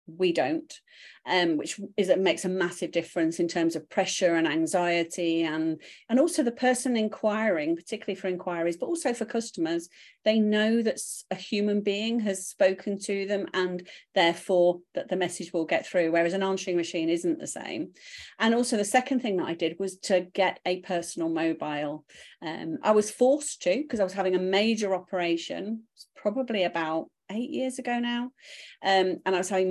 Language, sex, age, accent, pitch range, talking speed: English, female, 40-59, British, 175-230 Hz, 185 wpm